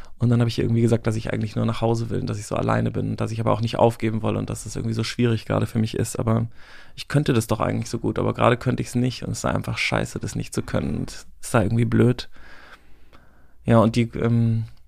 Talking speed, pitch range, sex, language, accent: 275 wpm, 105-125 Hz, male, German, German